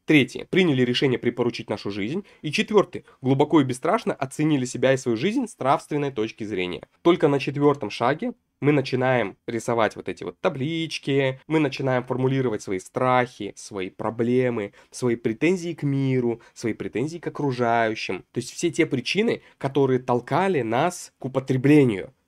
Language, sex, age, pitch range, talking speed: Russian, male, 20-39, 125-160 Hz, 150 wpm